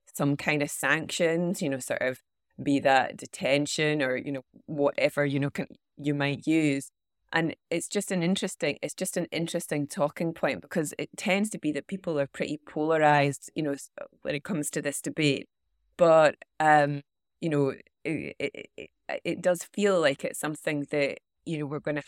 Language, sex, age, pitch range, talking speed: English, female, 30-49, 140-165 Hz, 185 wpm